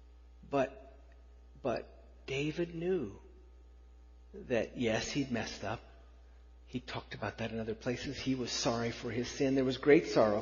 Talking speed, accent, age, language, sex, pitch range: 150 wpm, American, 50-69, English, male, 100-145 Hz